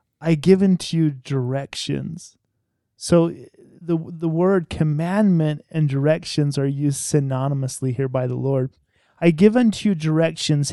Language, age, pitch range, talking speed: English, 30-49, 140-175 Hz, 135 wpm